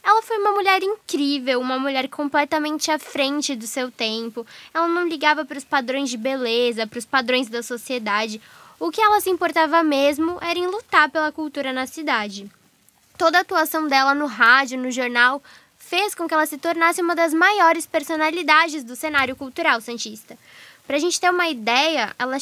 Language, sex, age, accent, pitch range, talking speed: Portuguese, female, 10-29, Brazilian, 265-345 Hz, 180 wpm